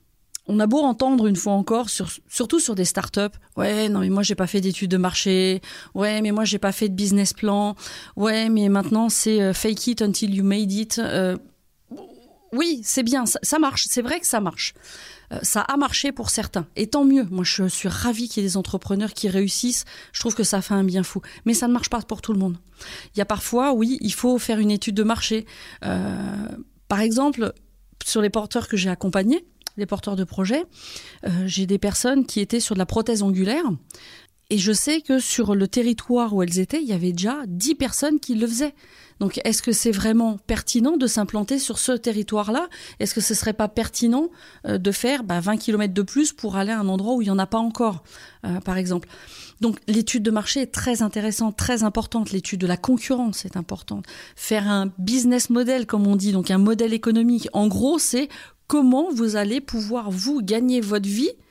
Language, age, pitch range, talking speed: French, 30-49, 200-245 Hz, 220 wpm